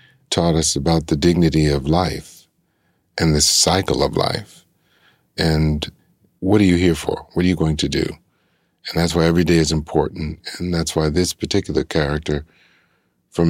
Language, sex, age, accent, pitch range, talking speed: English, male, 50-69, American, 80-85 Hz, 170 wpm